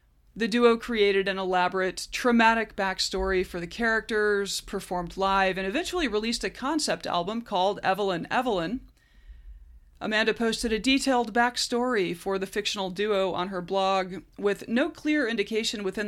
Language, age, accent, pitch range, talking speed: English, 30-49, American, 185-230 Hz, 140 wpm